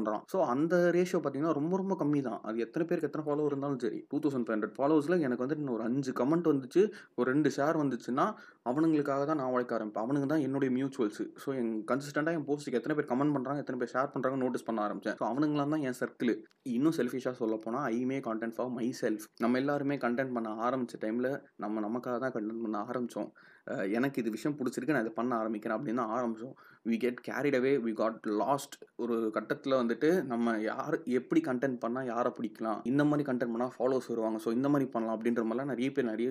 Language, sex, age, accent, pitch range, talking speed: Tamil, male, 20-39, native, 115-145 Hz, 70 wpm